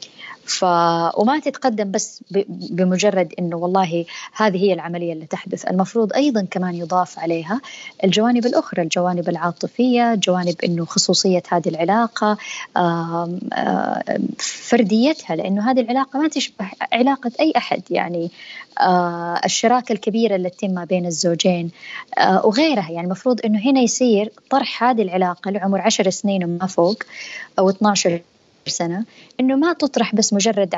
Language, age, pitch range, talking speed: Arabic, 20-39, 180-235 Hz, 125 wpm